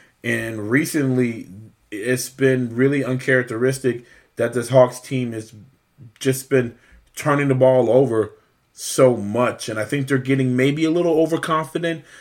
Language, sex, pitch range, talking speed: English, male, 115-135 Hz, 140 wpm